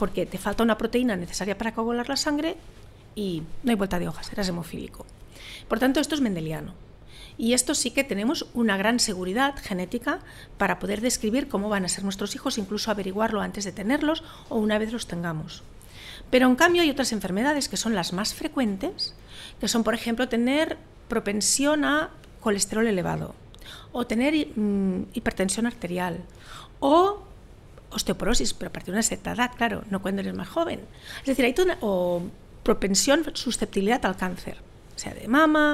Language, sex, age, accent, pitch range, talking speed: Spanish, female, 50-69, Spanish, 195-265 Hz, 175 wpm